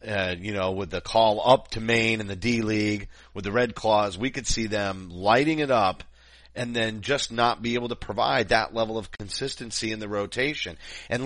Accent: American